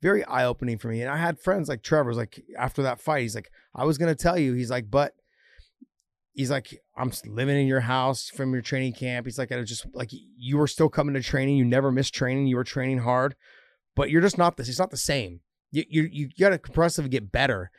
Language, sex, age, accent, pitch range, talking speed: English, male, 30-49, American, 120-140 Hz, 245 wpm